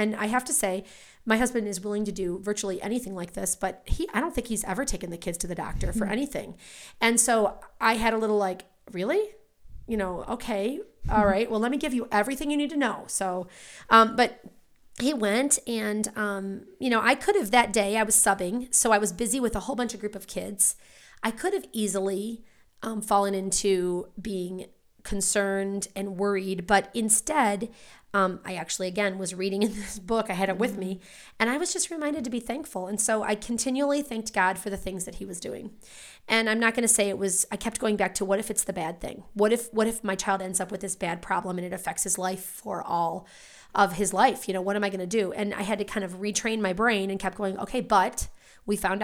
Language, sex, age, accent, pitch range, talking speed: English, female, 30-49, American, 195-230 Hz, 240 wpm